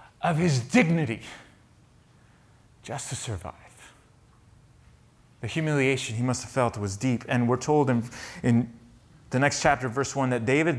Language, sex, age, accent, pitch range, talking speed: English, male, 30-49, American, 115-155 Hz, 145 wpm